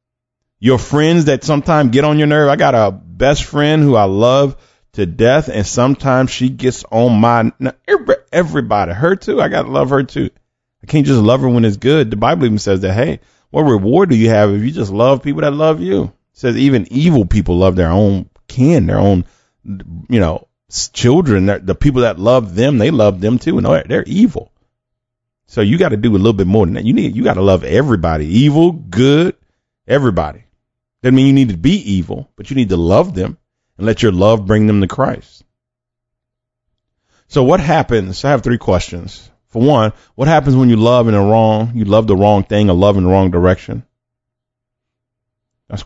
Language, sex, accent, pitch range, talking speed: English, male, American, 105-135 Hz, 205 wpm